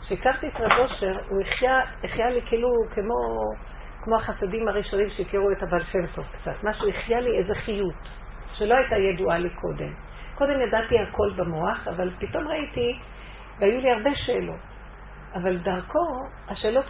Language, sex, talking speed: Hebrew, female, 150 wpm